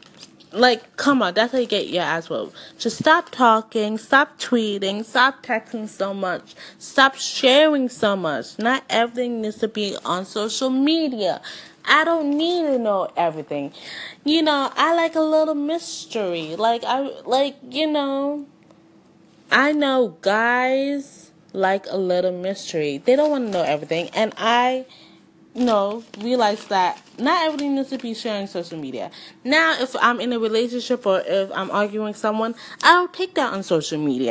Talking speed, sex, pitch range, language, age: 165 wpm, female, 195-270 Hz, English, 20-39